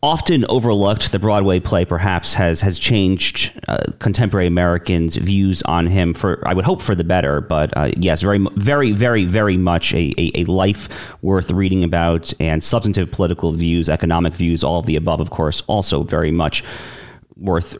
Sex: male